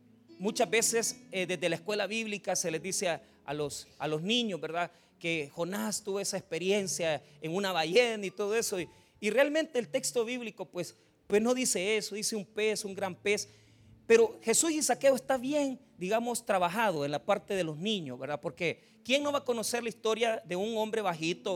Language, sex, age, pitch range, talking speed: Spanish, male, 40-59, 175-230 Hz, 200 wpm